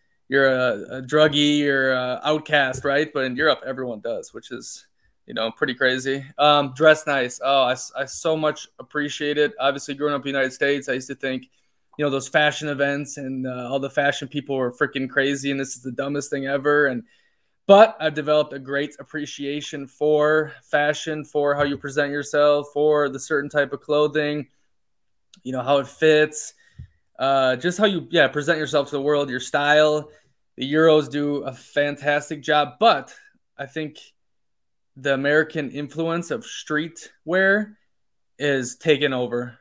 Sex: male